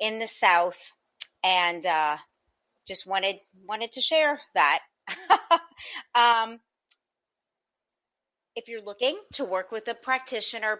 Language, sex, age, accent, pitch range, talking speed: English, female, 30-49, American, 180-225 Hz, 110 wpm